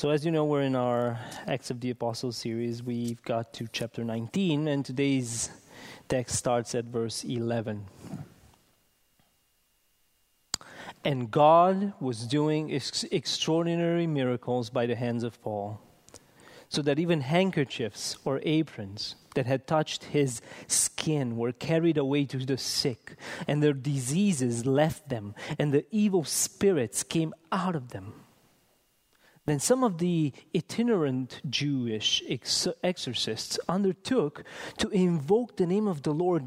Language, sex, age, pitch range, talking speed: English, male, 30-49, 120-170 Hz, 130 wpm